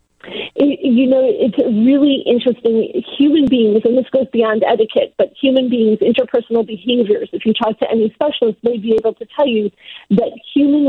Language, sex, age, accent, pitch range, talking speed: English, female, 40-59, American, 230-265 Hz, 170 wpm